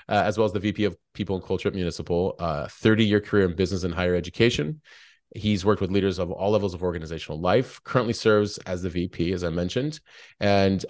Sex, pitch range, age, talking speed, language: male, 90-110 Hz, 30-49, 220 wpm, English